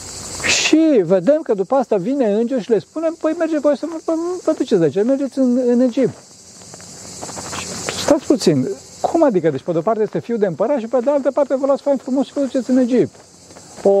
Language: Romanian